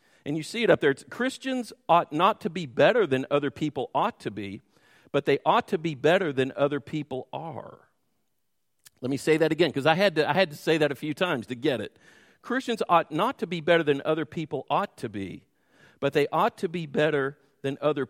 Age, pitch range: 50-69, 155-240 Hz